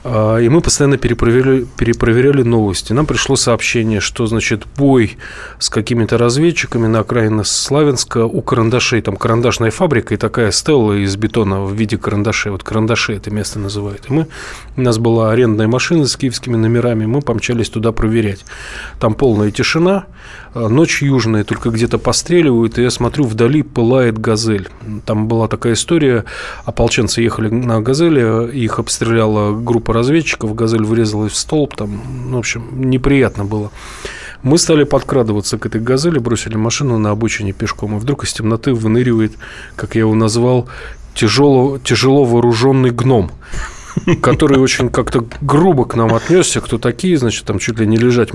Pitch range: 110-130 Hz